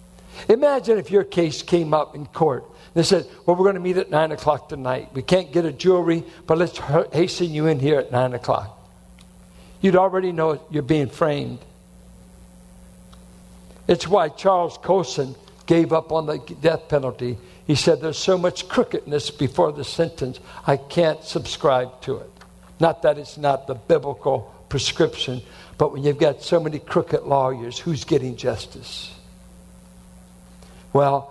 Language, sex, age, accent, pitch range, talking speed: English, male, 60-79, American, 125-170 Hz, 155 wpm